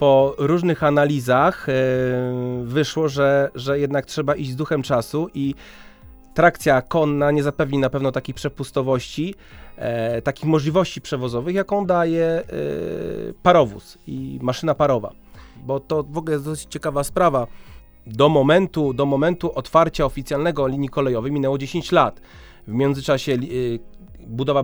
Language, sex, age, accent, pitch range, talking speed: Polish, male, 30-49, native, 130-155 Hz, 135 wpm